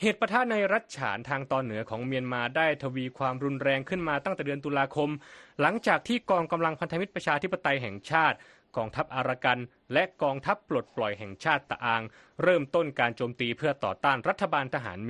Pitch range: 125-175 Hz